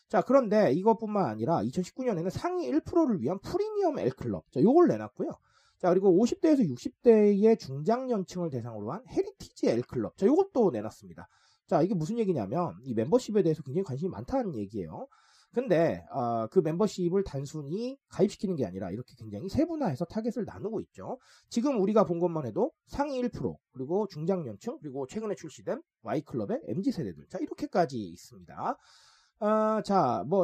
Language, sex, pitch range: Korean, male, 155-235 Hz